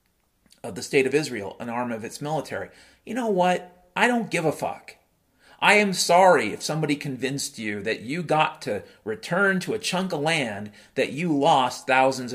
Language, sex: English, male